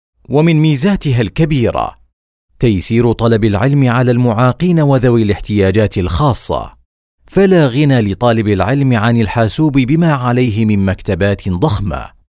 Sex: male